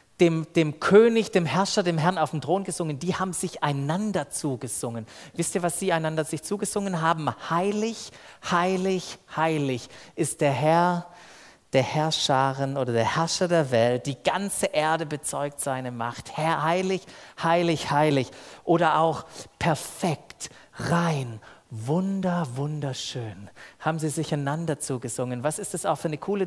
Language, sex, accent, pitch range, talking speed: German, male, German, 145-190 Hz, 145 wpm